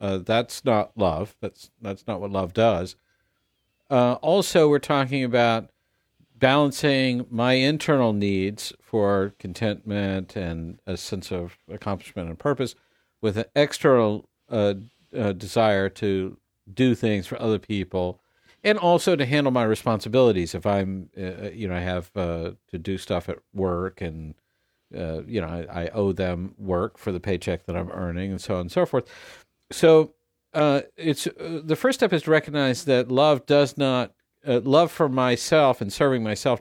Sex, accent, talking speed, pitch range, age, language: male, American, 170 wpm, 95-130 Hz, 50-69, English